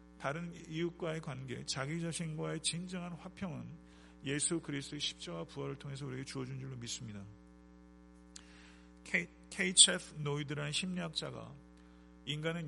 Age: 40-59